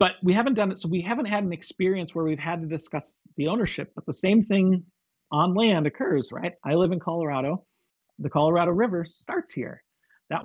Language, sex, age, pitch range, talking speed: English, male, 40-59, 145-180 Hz, 205 wpm